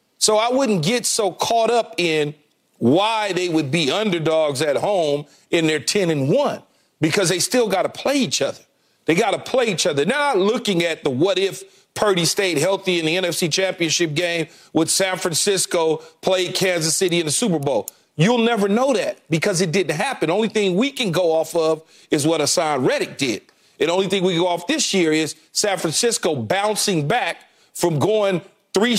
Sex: male